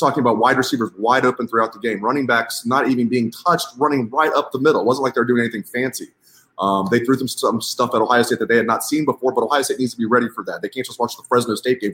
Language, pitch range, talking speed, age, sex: English, 105-130 Hz, 295 wpm, 30-49, male